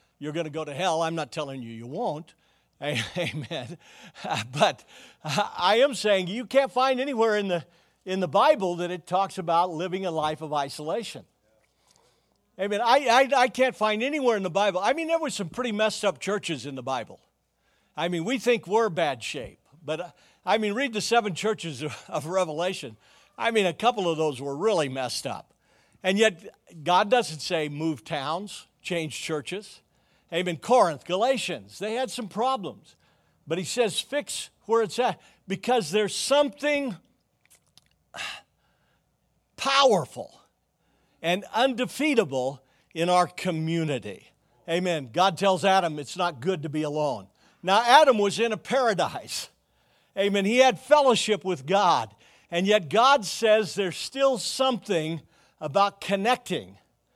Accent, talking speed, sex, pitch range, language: American, 155 wpm, male, 160-225 Hz, English